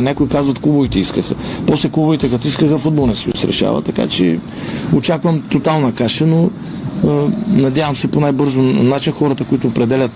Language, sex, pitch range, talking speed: Bulgarian, male, 125-145 Hz, 160 wpm